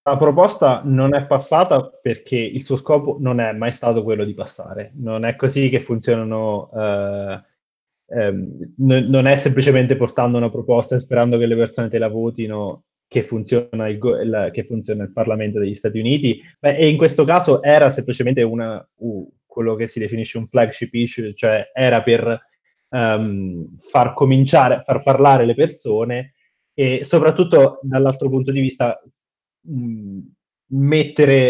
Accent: native